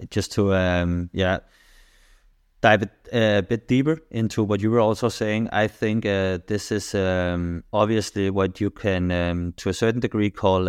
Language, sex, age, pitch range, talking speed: English, male, 30-49, 90-105 Hz, 175 wpm